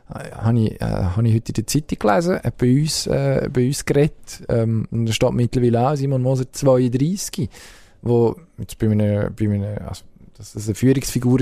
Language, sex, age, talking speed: German, male, 20-39, 150 wpm